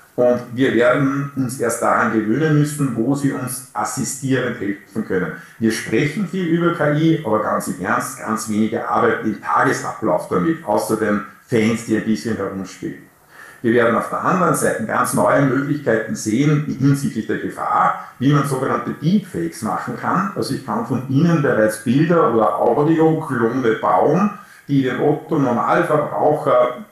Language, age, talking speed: German, 50-69, 150 wpm